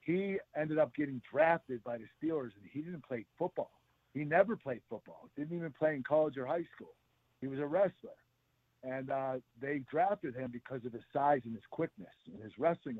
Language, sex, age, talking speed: English, male, 50-69, 205 wpm